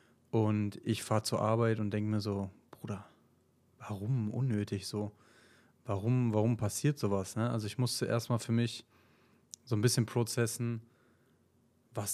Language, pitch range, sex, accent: German, 110-125 Hz, male, German